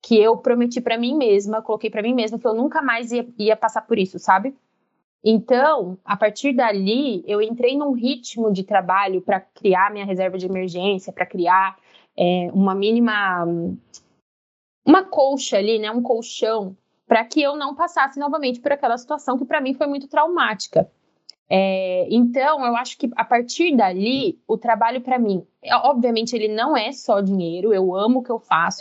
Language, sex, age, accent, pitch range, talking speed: Portuguese, female, 20-39, Brazilian, 195-255 Hz, 175 wpm